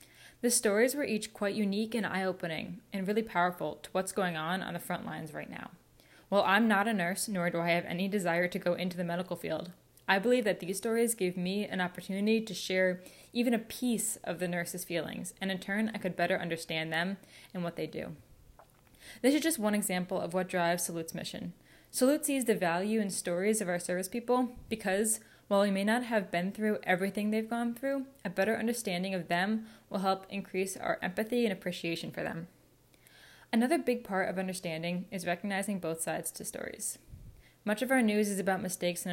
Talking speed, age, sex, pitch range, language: 205 wpm, 10-29, female, 175-220 Hz, English